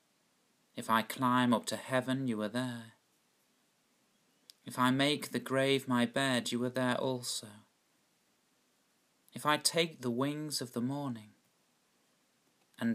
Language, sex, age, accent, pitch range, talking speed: English, male, 40-59, British, 120-135 Hz, 135 wpm